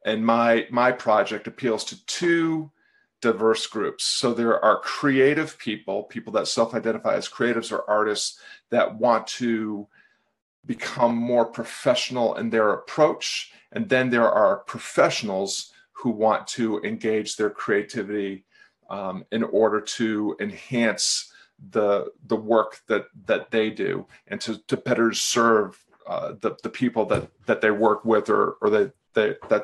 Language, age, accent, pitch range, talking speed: English, 40-59, American, 110-140 Hz, 145 wpm